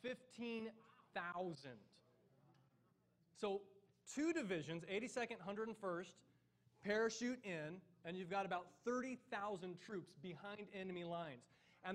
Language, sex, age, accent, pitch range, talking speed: English, male, 30-49, American, 170-225 Hz, 90 wpm